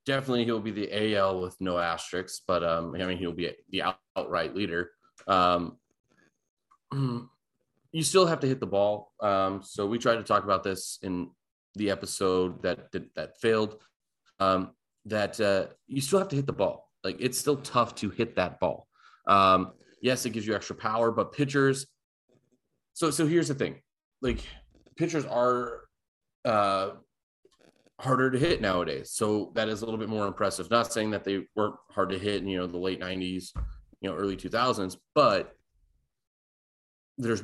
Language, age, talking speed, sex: English, 30-49, 175 wpm, male